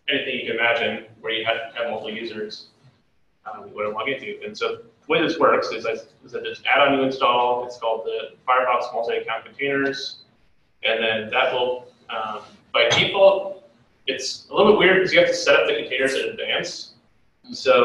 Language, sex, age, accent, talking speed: English, male, 30-49, American, 195 wpm